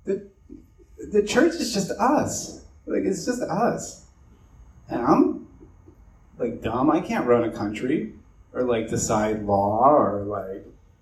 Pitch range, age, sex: 95-140 Hz, 30-49, male